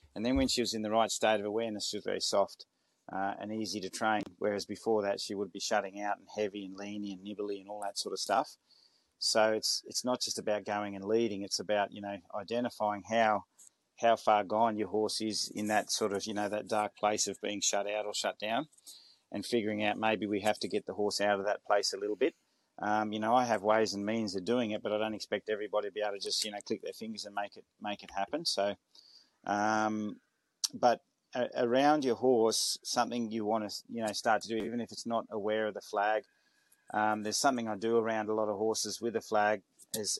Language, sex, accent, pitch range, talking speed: English, male, Australian, 105-115 Hz, 245 wpm